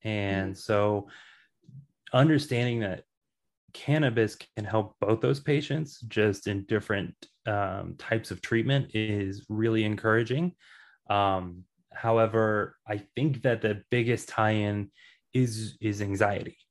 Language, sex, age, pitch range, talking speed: English, male, 20-39, 100-120 Hz, 115 wpm